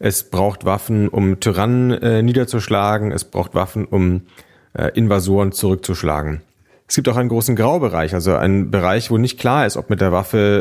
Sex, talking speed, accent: male, 175 wpm, German